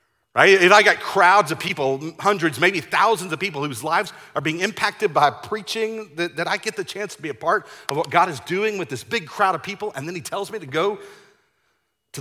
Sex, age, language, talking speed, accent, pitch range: male, 40-59, English, 235 wpm, American, 130-210 Hz